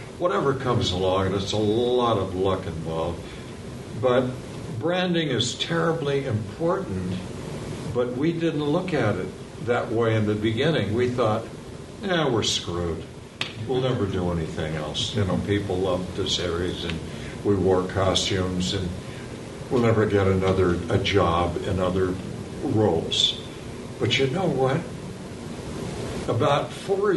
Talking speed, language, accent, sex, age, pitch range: 135 wpm, English, American, male, 60-79, 95-130 Hz